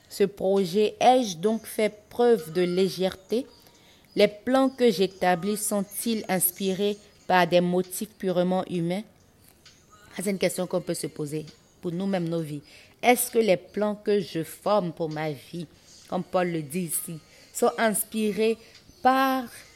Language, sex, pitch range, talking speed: French, female, 175-220 Hz, 145 wpm